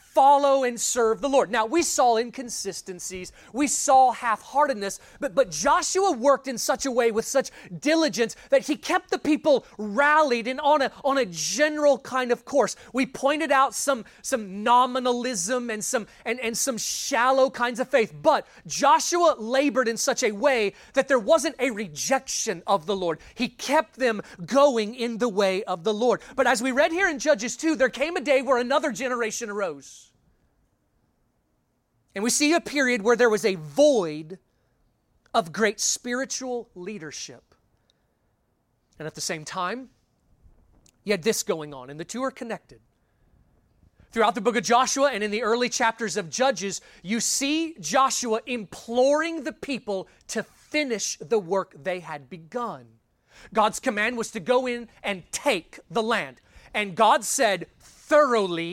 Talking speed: 165 wpm